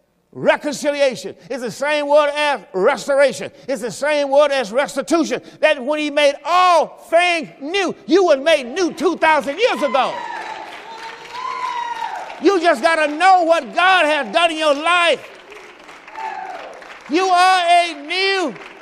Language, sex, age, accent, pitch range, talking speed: English, male, 50-69, American, 200-330 Hz, 135 wpm